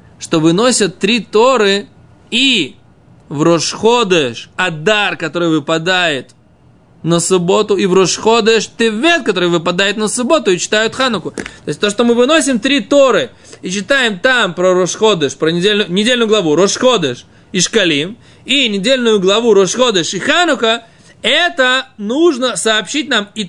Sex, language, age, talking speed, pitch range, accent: male, Russian, 20-39, 140 wpm, 160-225 Hz, native